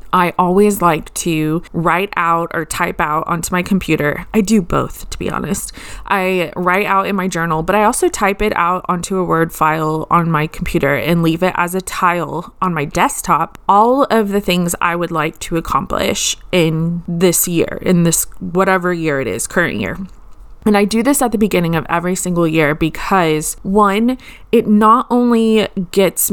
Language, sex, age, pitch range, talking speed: English, female, 20-39, 170-220 Hz, 190 wpm